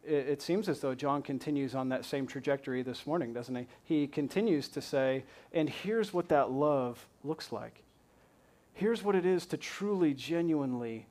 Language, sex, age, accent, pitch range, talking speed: English, male, 40-59, American, 120-160 Hz, 175 wpm